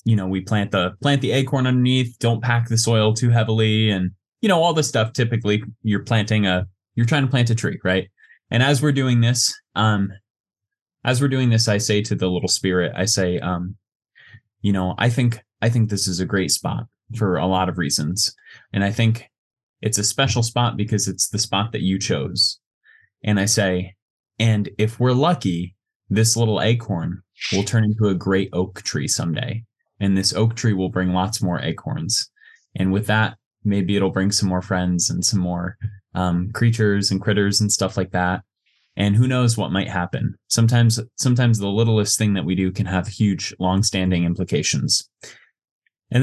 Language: English